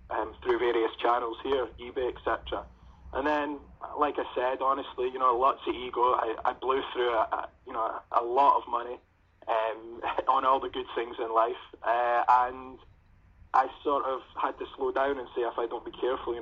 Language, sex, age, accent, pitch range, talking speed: English, male, 20-39, British, 85-140 Hz, 195 wpm